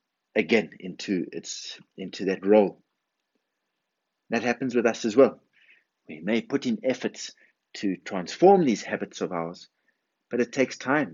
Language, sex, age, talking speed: English, male, 60-79, 145 wpm